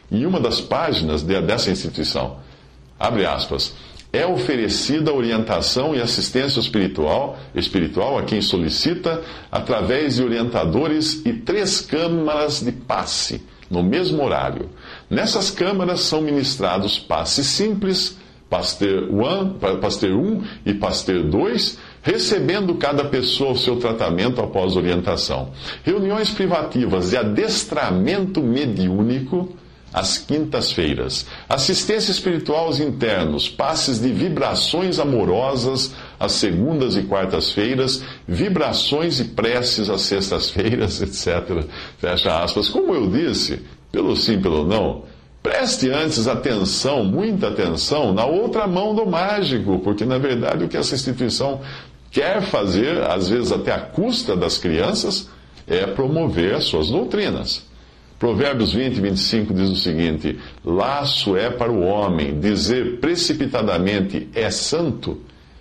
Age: 50-69